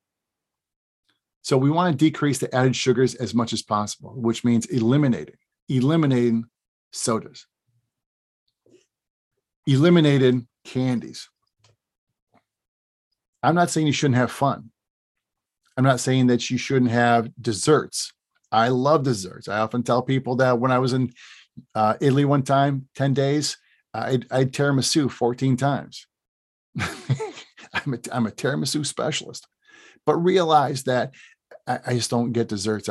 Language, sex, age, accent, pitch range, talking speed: English, male, 50-69, American, 115-135 Hz, 130 wpm